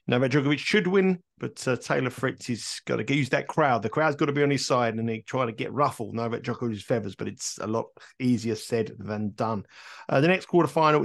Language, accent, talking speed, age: English, British, 235 wpm, 50-69